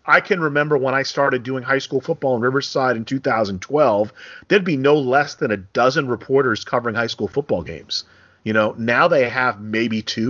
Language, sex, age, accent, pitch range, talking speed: English, male, 40-59, American, 120-140 Hz, 200 wpm